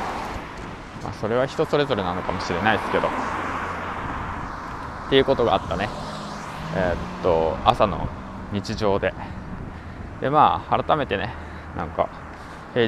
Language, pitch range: Japanese, 90-130 Hz